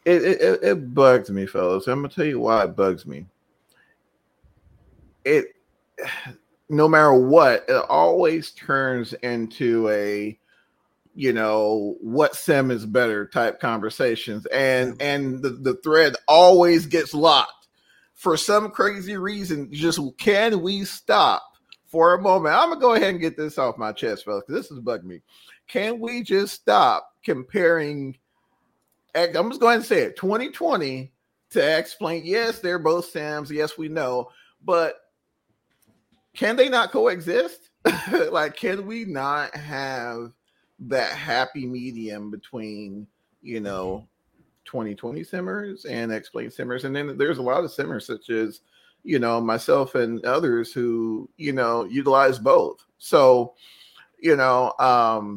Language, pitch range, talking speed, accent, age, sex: English, 120-175 Hz, 145 wpm, American, 30-49, male